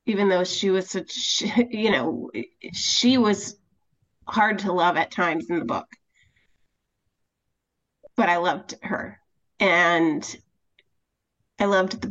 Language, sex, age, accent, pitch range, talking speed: English, female, 30-49, American, 175-210 Hz, 125 wpm